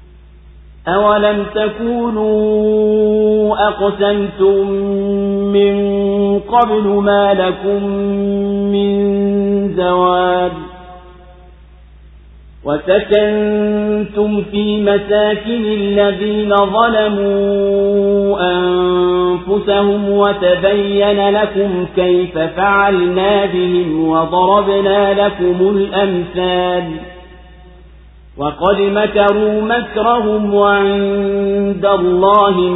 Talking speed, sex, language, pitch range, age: 50 wpm, male, Swahili, 180-205 Hz, 40-59